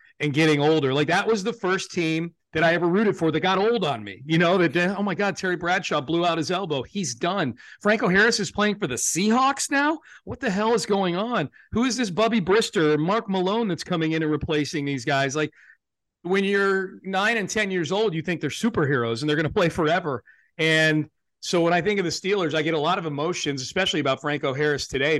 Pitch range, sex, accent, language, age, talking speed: 155-195 Hz, male, American, English, 40-59, 230 wpm